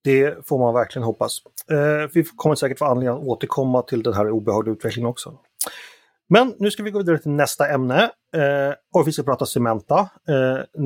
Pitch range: 120-150 Hz